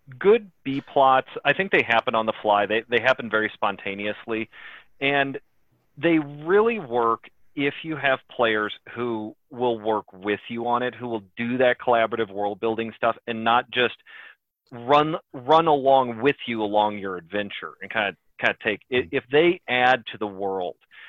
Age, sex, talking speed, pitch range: 30-49, male, 175 wpm, 110-150 Hz